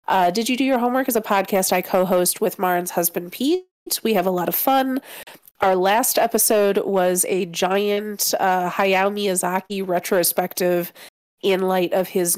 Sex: female